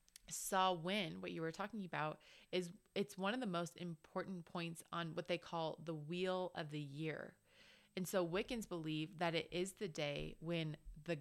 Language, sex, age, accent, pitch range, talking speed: English, female, 20-39, American, 160-195 Hz, 185 wpm